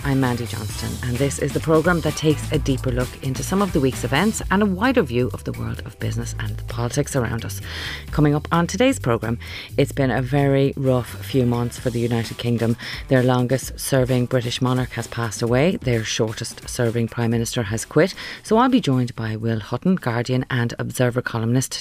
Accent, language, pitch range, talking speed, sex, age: Irish, English, 115-150 Hz, 205 wpm, female, 30-49